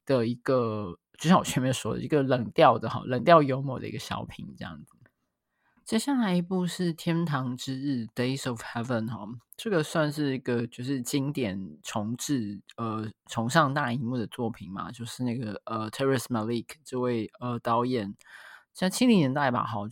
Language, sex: Chinese, male